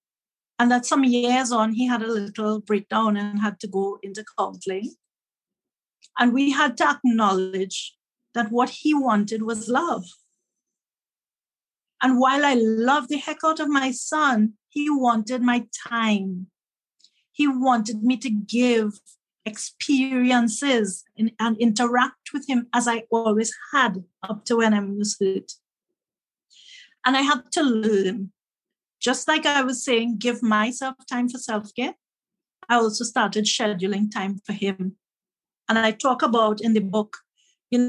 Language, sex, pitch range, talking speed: English, female, 210-265 Hz, 145 wpm